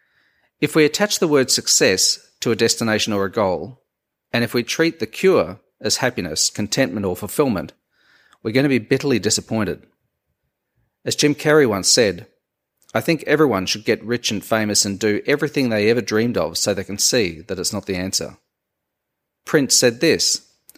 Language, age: English, 40-59